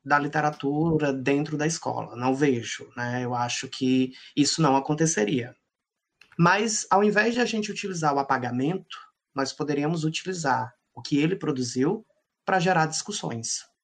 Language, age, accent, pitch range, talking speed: Portuguese, 20-39, Brazilian, 125-160 Hz, 145 wpm